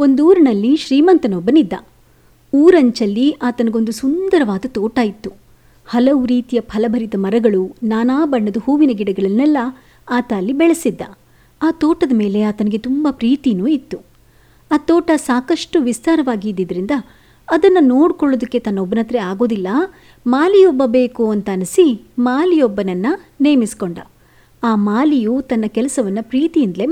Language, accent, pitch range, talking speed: Kannada, native, 220-295 Hz, 100 wpm